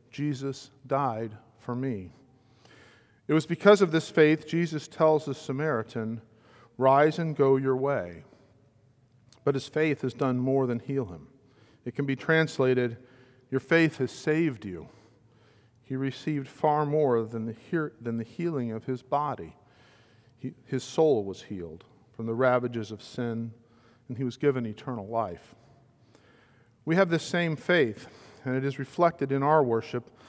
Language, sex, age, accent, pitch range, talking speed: English, male, 50-69, American, 115-140 Hz, 145 wpm